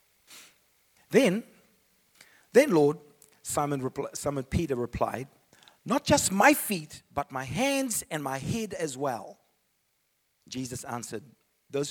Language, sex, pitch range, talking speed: English, male, 120-160 Hz, 110 wpm